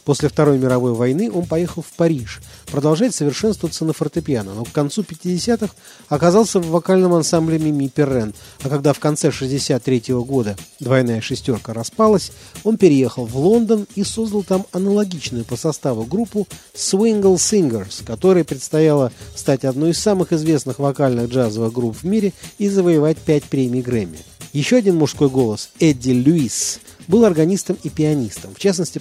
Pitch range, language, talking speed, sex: 130-180 Hz, Russian, 150 wpm, male